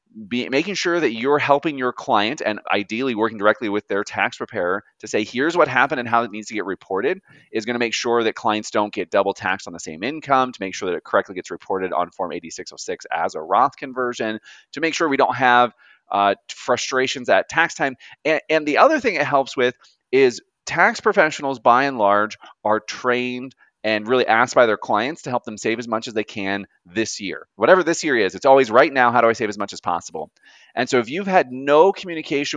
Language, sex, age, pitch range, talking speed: English, male, 30-49, 115-160 Hz, 230 wpm